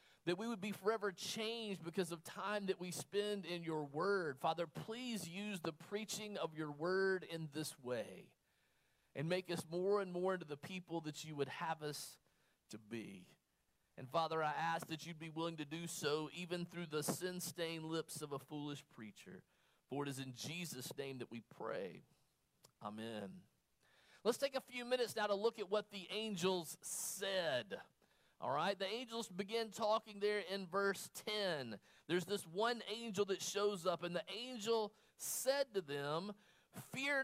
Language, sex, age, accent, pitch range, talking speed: English, male, 40-59, American, 160-215 Hz, 175 wpm